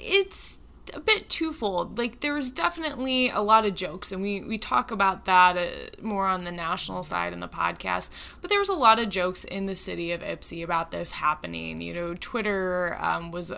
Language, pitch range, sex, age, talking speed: English, 175-220 Hz, female, 20-39, 205 wpm